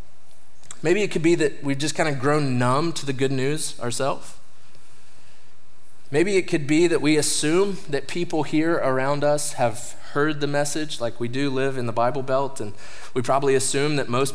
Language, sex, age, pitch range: English, male, 20-39, 120-145 Hz